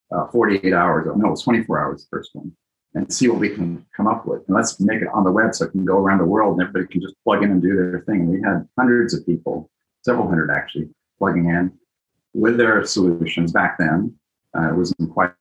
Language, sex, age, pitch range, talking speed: English, male, 40-59, 85-105 Hz, 240 wpm